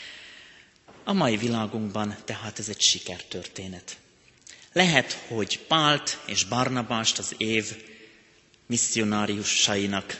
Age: 30-49